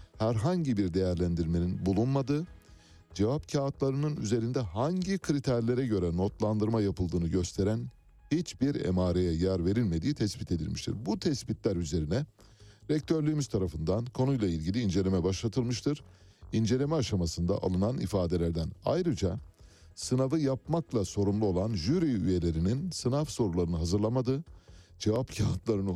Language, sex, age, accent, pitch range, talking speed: Turkish, male, 60-79, native, 90-125 Hz, 100 wpm